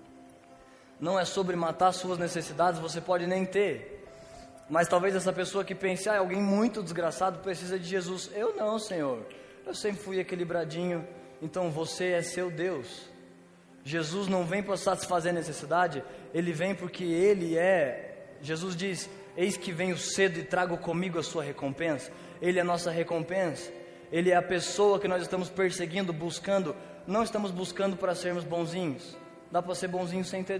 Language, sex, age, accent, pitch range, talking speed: Portuguese, male, 20-39, Brazilian, 160-190 Hz, 165 wpm